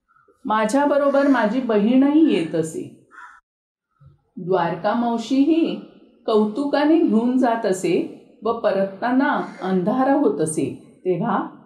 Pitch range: 195-260 Hz